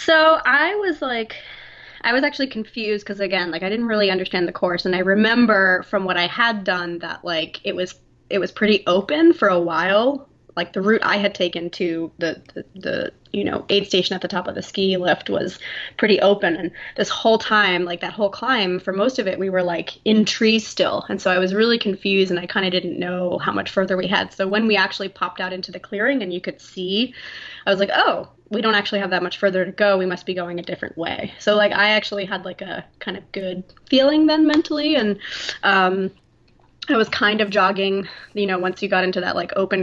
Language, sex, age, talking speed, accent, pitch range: English, female, 20-39, 235 wpm, American, 180-210 Hz